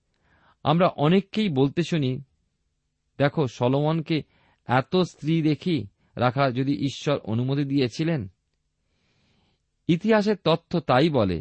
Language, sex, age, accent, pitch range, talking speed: Bengali, male, 40-59, native, 95-155 Hz, 95 wpm